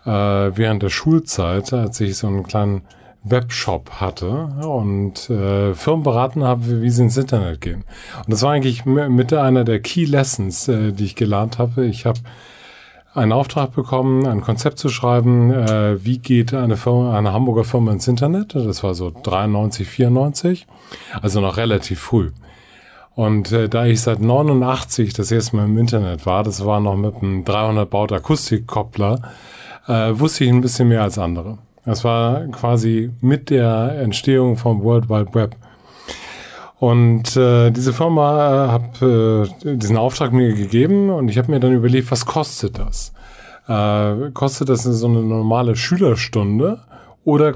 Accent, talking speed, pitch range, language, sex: German, 150 wpm, 105-130 Hz, German, male